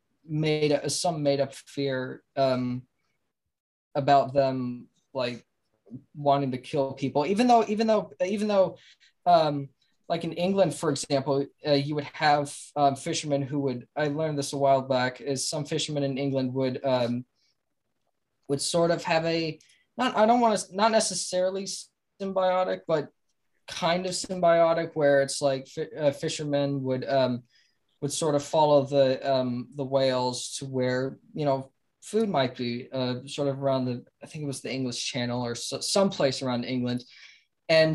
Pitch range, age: 135-165 Hz, 20-39